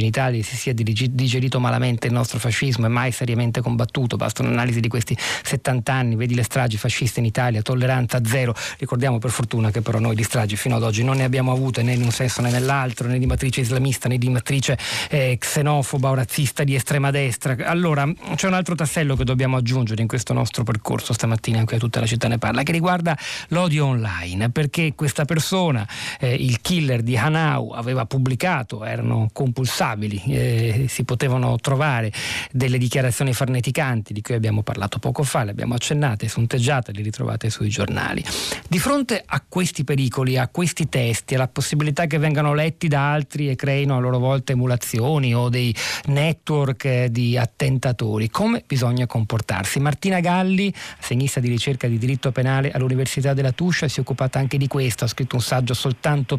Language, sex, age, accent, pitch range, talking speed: Italian, male, 40-59, native, 120-140 Hz, 180 wpm